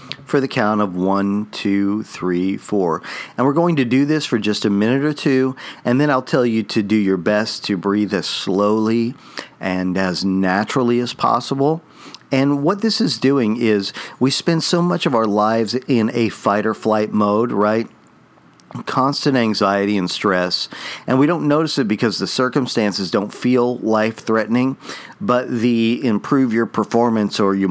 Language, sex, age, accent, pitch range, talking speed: English, male, 50-69, American, 105-130 Hz, 175 wpm